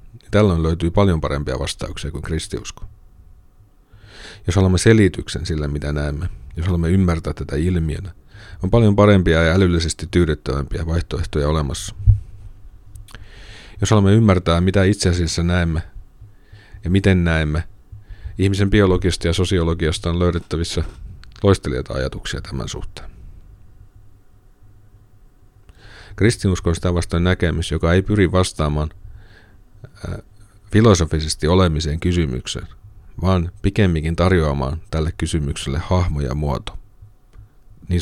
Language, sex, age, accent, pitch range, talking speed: Finnish, male, 40-59, native, 80-100 Hz, 105 wpm